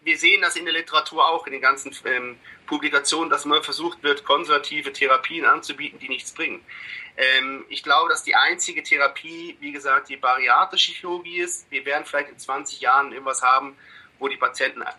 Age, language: 40-59, German